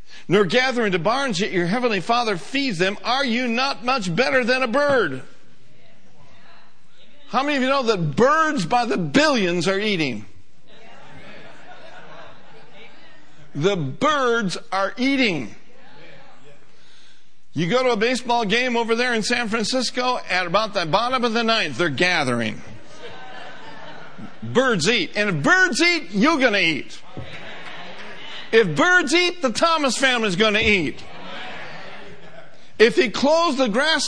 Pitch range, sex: 195-265 Hz, male